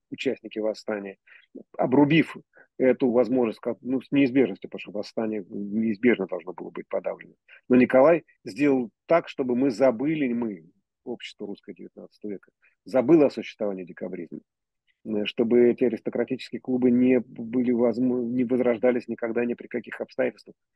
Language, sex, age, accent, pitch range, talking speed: Russian, male, 40-59, native, 110-140 Hz, 135 wpm